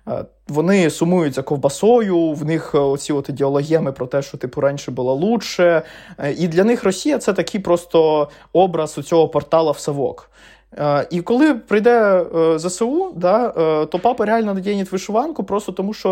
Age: 20-39